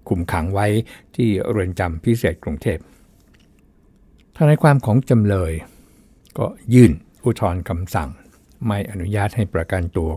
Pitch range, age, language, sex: 90-120 Hz, 60-79, Thai, male